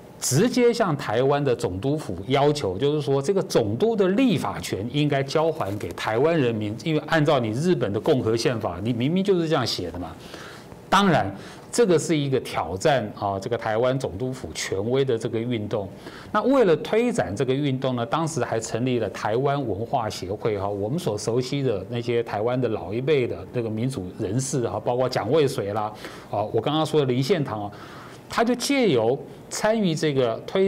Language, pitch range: Chinese, 120-160 Hz